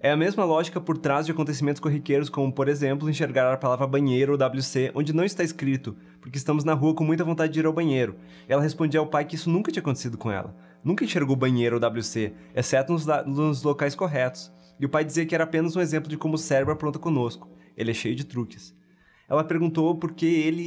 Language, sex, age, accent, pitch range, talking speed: Portuguese, male, 20-39, Brazilian, 120-155 Hz, 225 wpm